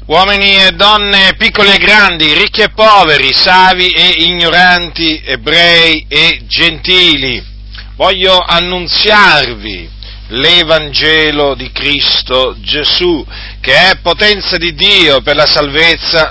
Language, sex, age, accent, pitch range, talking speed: Italian, male, 40-59, native, 110-185 Hz, 105 wpm